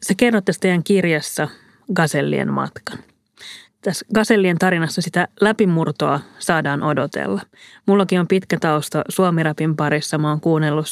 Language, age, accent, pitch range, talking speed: Finnish, 30-49, native, 155-190 Hz, 115 wpm